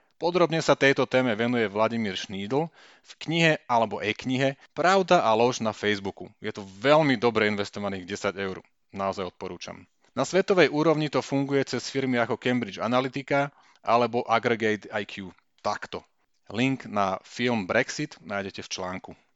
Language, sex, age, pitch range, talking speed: Slovak, male, 30-49, 110-145 Hz, 145 wpm